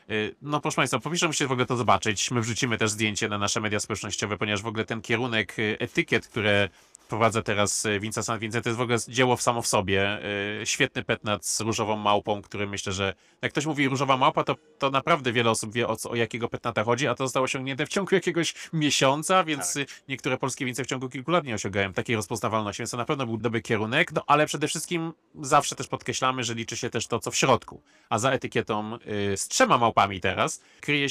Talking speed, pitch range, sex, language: 210 wpm, 110-135 Hz, male, Polish